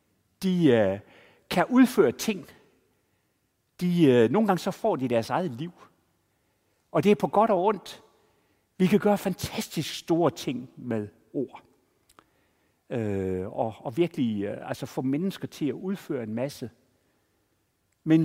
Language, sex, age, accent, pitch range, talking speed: Danish, male, 60-79, native, 115-180 Hz, 145 wpm